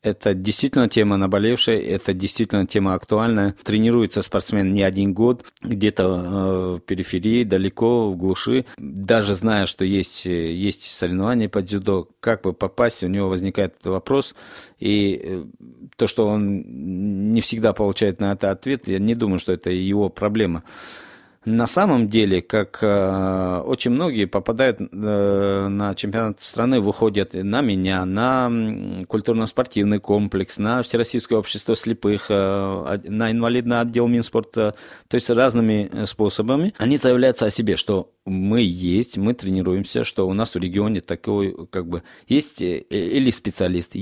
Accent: native